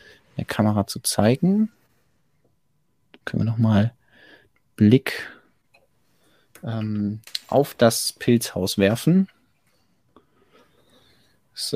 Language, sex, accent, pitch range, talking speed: German, male, German, 105-125 Hz, 70 wpm